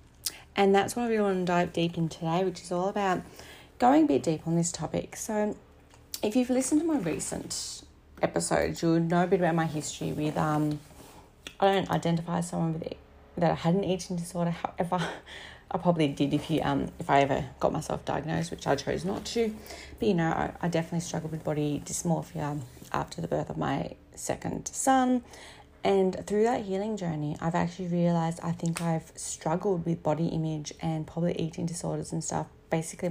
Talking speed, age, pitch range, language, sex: 200 wpm, 30-49, 160-195 Hz, English, female